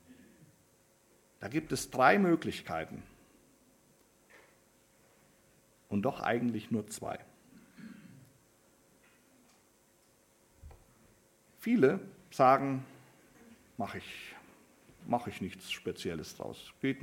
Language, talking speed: German, 65 wpm